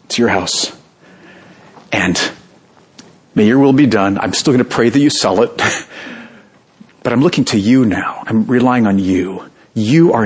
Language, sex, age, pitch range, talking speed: English, male, 50-69, 105-150 Hz, 175 wpm